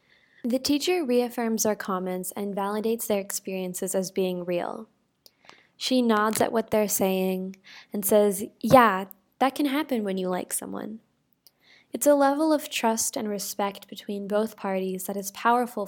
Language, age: English, 10-29